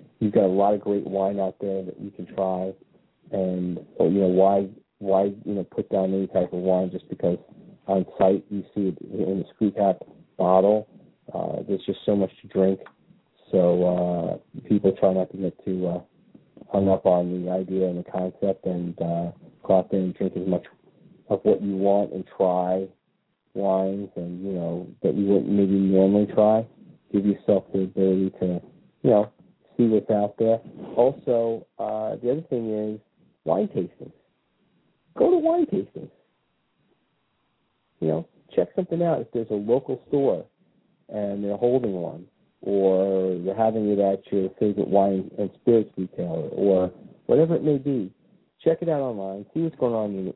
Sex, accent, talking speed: male, American, 175 wpm